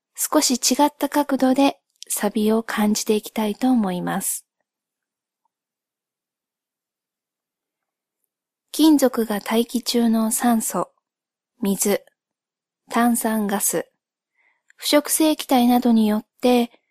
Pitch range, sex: 225-280 Hz, female